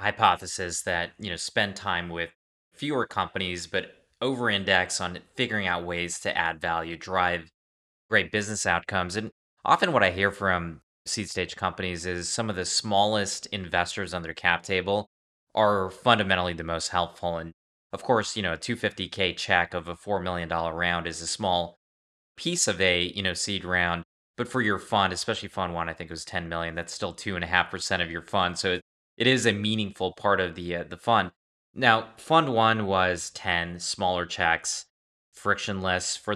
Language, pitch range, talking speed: English, 85-100 Hz, 190 wpm